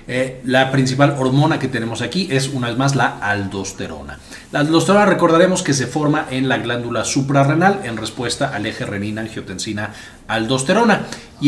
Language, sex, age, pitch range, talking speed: Spanish, male, 40-59, 115-155 Hz, 150 wpm